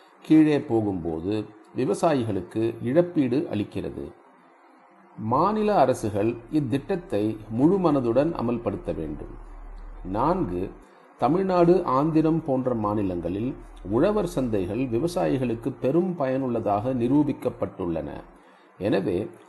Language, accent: Tamil, native